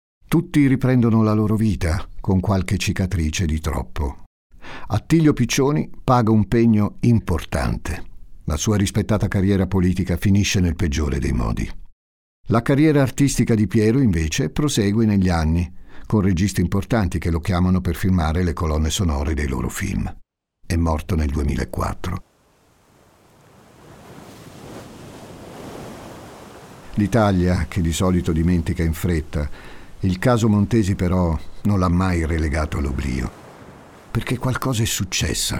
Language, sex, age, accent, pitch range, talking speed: Italian, male, 50-69, native, 80-110 Hz, 125 wpm